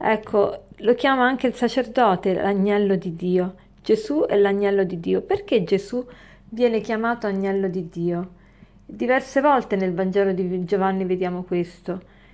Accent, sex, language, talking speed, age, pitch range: native, female, Italian, 140 wpm, 40-59, 195-240 Hz